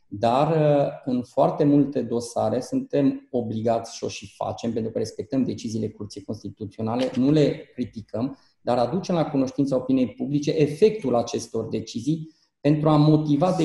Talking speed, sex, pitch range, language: 145 wpm, male, 120-150 Hz, Romanian